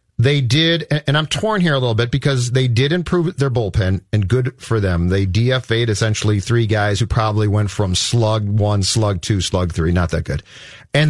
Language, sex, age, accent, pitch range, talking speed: English, male, 40-59, American, 110-160 Hz, 205 wpm